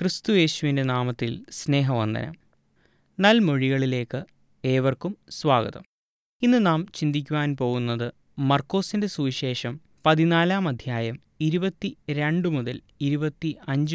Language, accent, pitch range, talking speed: Malayalam, native, 135-175 Hz, 75 wpm